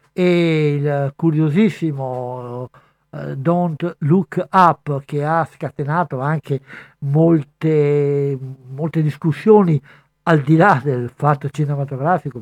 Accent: native